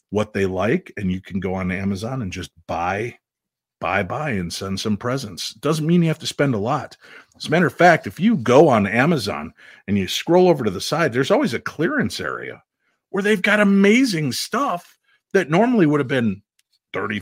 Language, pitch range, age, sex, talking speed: English, 95-140 Hz, 50-69, male, 205 wpm